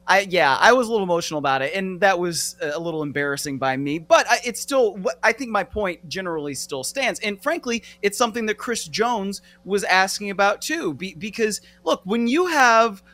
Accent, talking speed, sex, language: American, 190 wpm, male, English